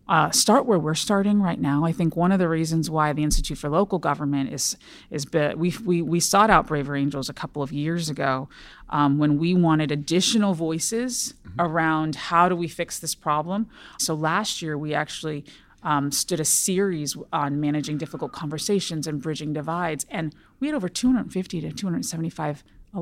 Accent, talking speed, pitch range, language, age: American, 180 wpm, 150-195 Hz, English, 30-49